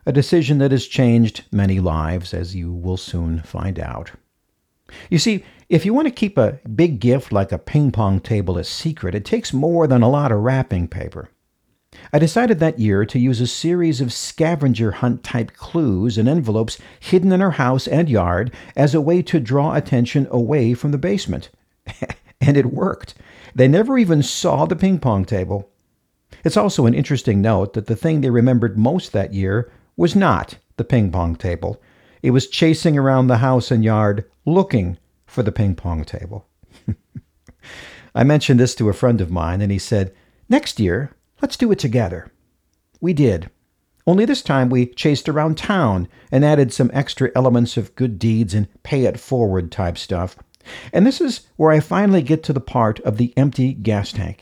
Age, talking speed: 50-69, 180 wpm